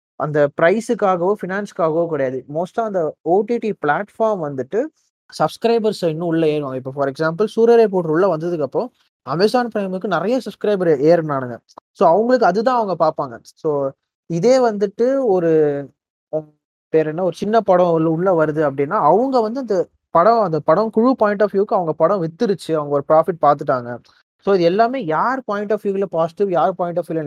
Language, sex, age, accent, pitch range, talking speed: Tamil, male, 20-39, native, 150-215 Hz, 160 wpm